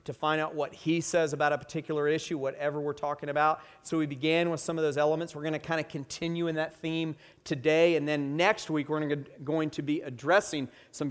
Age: 40-59